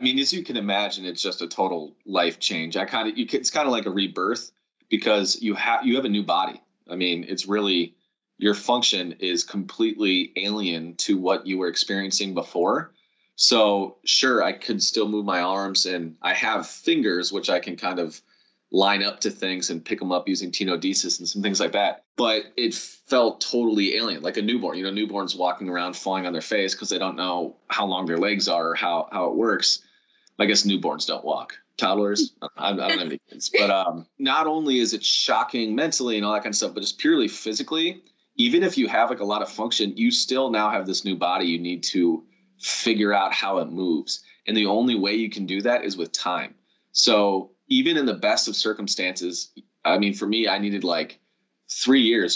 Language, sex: English, male